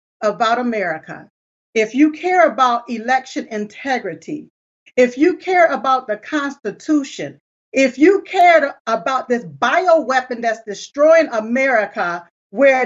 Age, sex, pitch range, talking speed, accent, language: 40-59, female, 215-265 Hz, 110 wpm, American, English